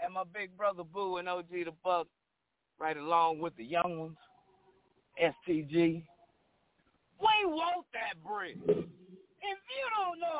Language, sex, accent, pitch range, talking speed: English, male, American, 225-320 Hz, 140 wpm